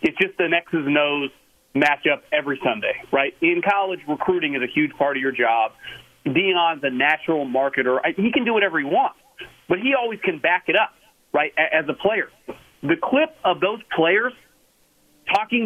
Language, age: English, 40-59